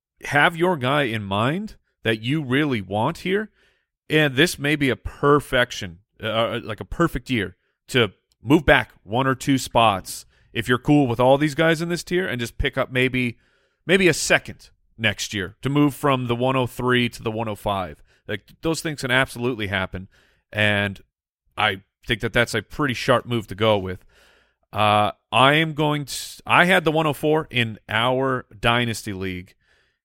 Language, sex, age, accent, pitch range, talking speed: English, male, 30-49, American, 105-130 Hz, 175 wpm